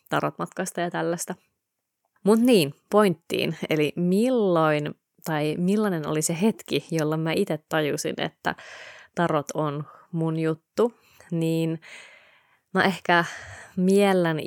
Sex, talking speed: female, 110 wpm